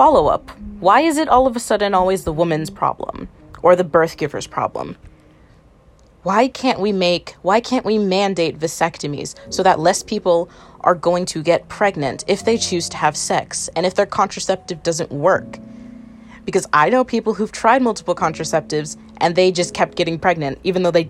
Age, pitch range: 20-39, 160-210 Hz